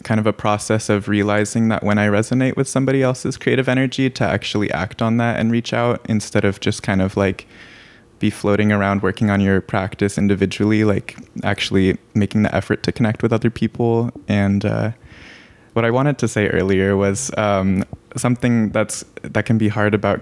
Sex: male